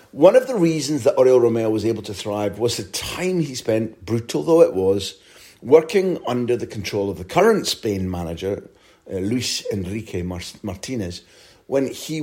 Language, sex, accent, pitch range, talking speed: English, male, British, 100-135 Hz, 170 wpm